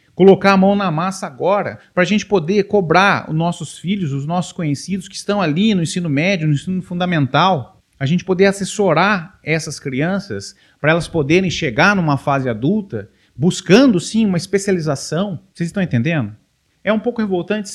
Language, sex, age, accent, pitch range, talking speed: Portuguese, male, 40-59, Brazilian, 155-200 Hz, 170 wpm